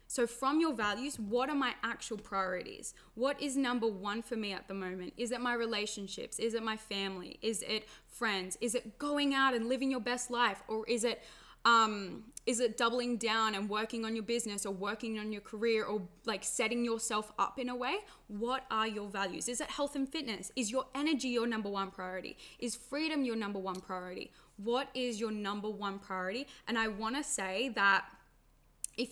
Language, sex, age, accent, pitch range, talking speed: English, female, 10-29, Australian, 200-245 Hz, 200 wpm